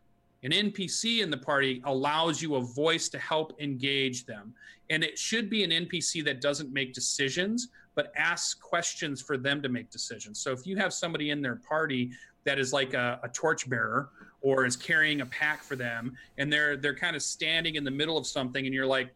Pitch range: 130-160 Hz